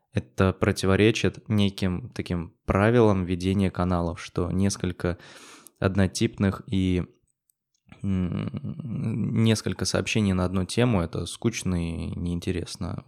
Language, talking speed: Russian, 95 wpm